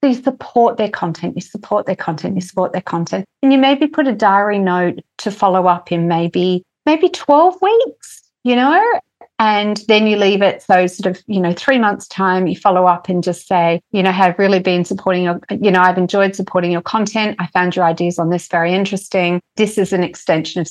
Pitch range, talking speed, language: 170-215 Hz, 215 wpm, English